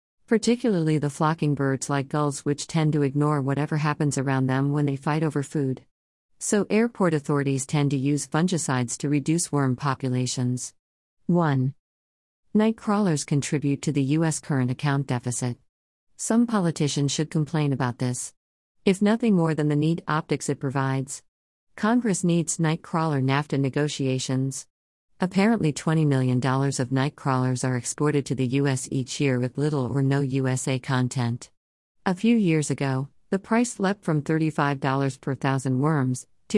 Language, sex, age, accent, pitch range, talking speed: English, female, 50-69, American, 130-165 Hz, 150 wpm